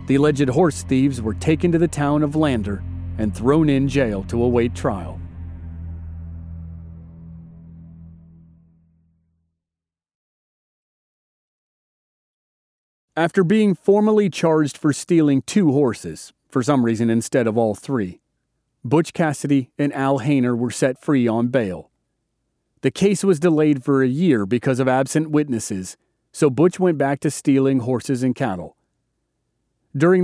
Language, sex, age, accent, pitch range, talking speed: English, male, 40-59, American, 115-160 Hz, 125 wpm